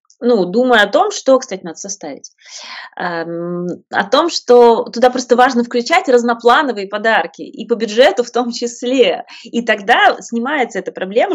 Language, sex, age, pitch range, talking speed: Russian, female, 20-39, 175-245 Hz, 155 wpm